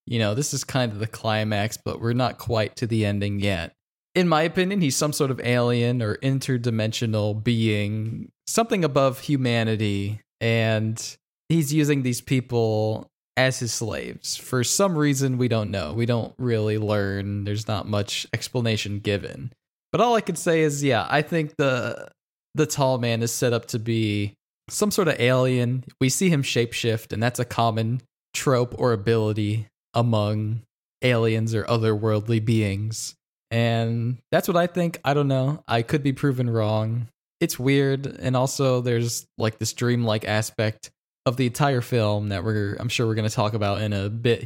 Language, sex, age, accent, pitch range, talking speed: English, male, 20-39, American, 110-135 Hz, 175 wpm